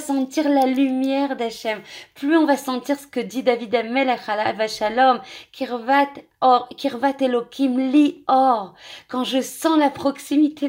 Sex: female